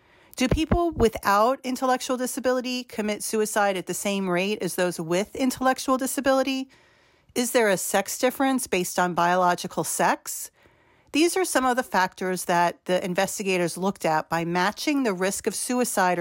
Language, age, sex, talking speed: English, 40-59, female, 155 wpm